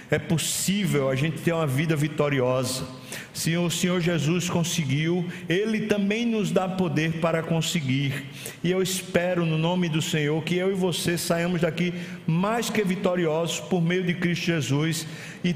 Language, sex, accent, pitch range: Portuguese, male, Brazilian, 135-180 Hz